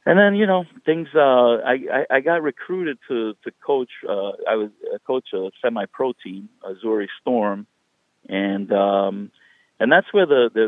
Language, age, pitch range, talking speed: English, 50-69, 100-135 Hz, 180 wpm